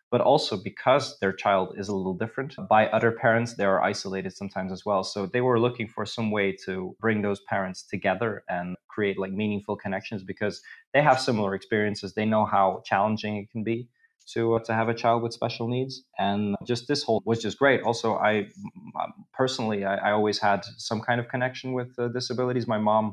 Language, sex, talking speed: English, male, 200 wpm